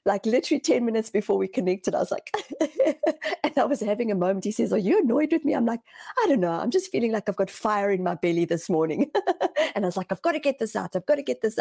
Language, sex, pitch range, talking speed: English, female, 170-225 Hz, 285 wpm